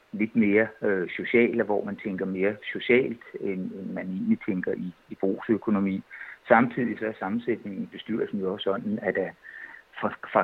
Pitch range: 100-130 Hz